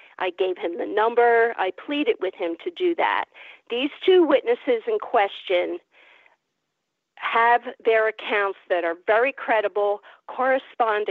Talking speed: 135 wpm